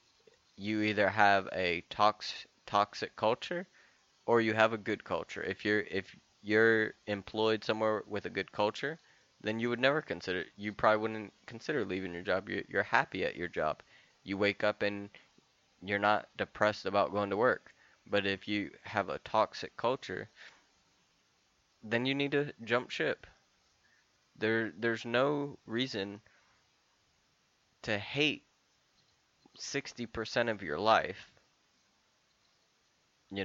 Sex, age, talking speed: male, 20-39, 135 wpm